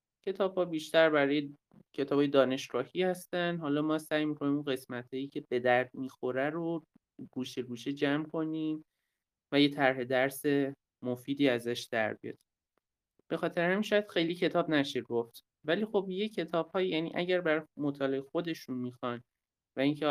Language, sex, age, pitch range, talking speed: Persian, male, 30-49, 125-170 Hz, 145 wpm